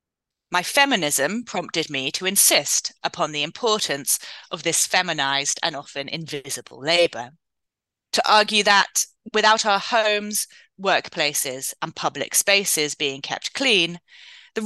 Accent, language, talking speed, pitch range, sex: British, English, 125 wpm, 150-215 Hz, female